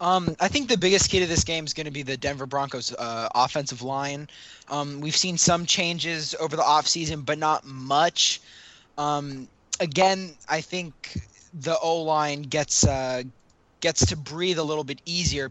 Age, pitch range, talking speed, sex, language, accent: 20-39, 130-165 Hz, 180 wpm, male, English, American